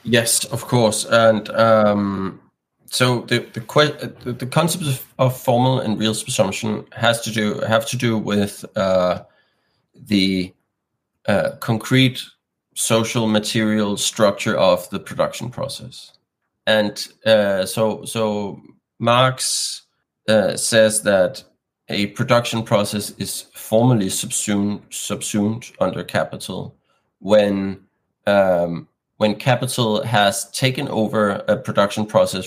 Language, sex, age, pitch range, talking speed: German, male, 30-49, 105-125 Hz, 115 wpm